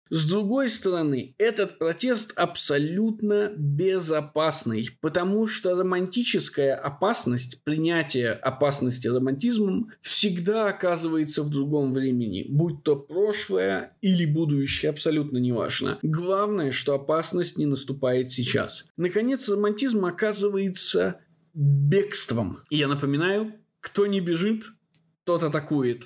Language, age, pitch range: Russian, 20-39, 135-190 Hz